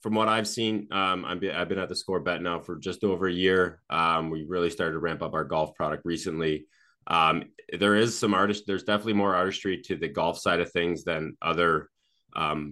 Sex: male